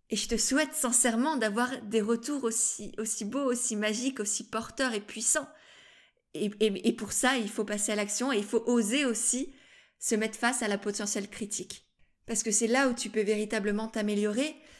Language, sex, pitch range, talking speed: French, female, 220-265 Hz, 195 wpm